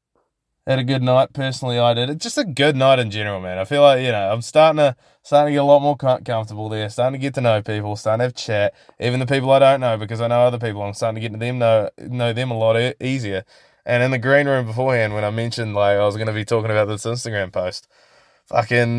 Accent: Australian